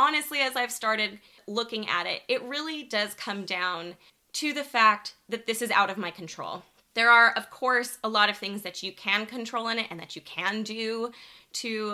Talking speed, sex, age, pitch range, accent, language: 210 wpm, female, 20-39, 185-235 Hz, American, English